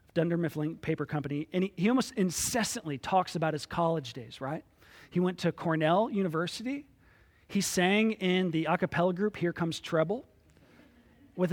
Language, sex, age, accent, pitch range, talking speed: English, male, 40-59, American, 150-200 Hz, 160 wpm